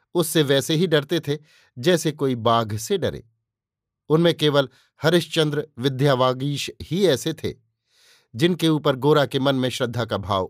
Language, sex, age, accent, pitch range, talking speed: Hindi, male, 50-69, native, 125-160 Hz, 150 wpm